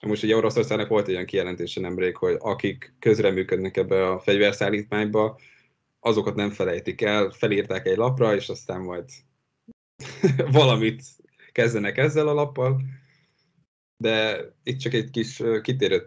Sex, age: male, 10-29